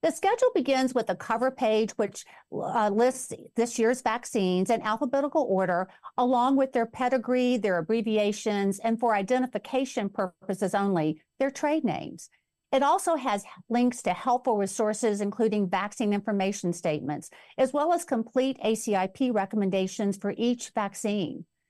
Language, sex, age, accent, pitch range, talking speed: English, female, 50-69, American, 200-255 Hz, 140 wpm